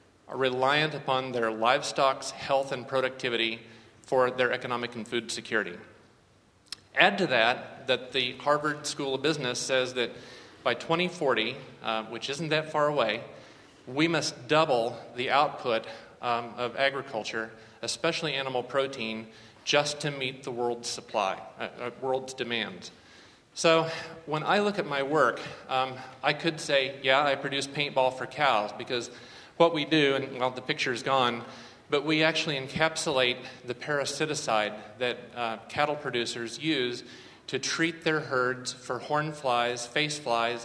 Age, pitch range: 40-59, 120-150 Hz